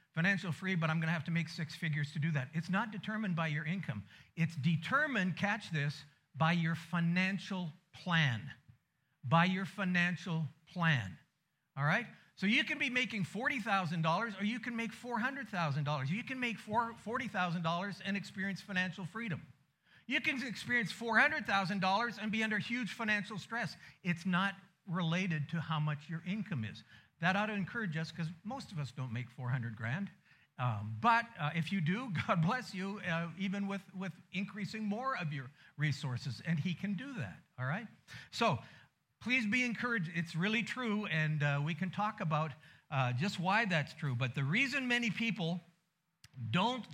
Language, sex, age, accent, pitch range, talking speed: English, male, 50-69, American, 155-205 Hz, 170 wpm